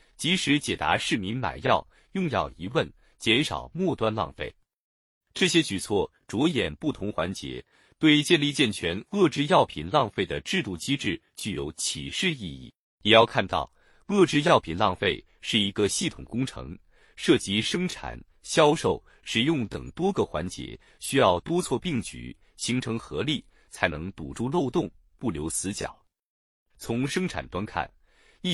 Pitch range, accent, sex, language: 95-155 Hz, native, male, Chinese